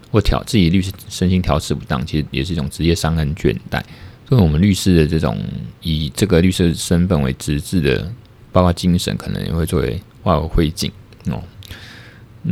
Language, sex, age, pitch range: Chinese, male, 20-39, 80-110 Hz